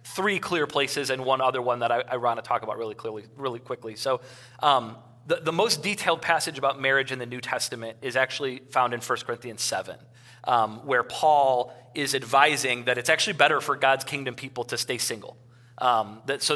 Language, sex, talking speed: English, male, 205 wpm